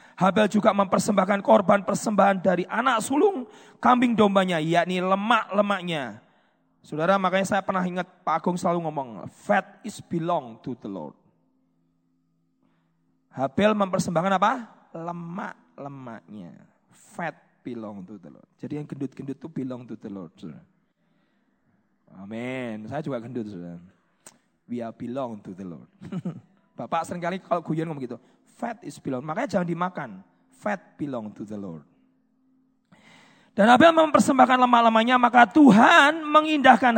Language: Indonesian